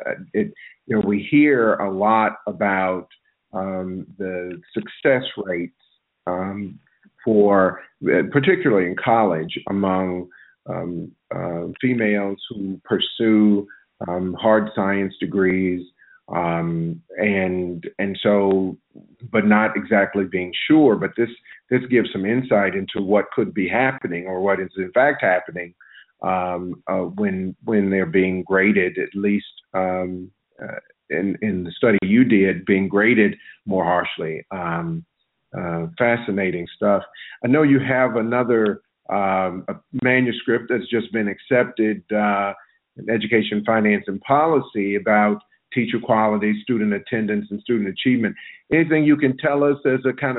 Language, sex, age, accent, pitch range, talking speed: English, male, 50-69, American, 95-115 Hz, 135 wpm